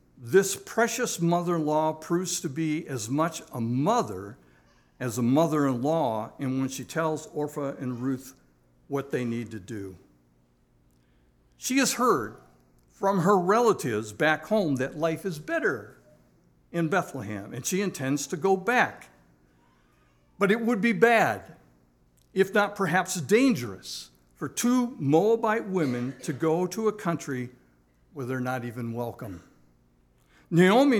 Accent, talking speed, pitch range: American, 135 wpm, 120-185 Hz